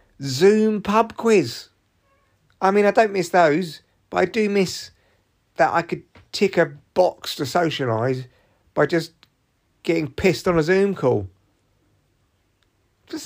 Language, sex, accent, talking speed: English, male, British, 135 wpm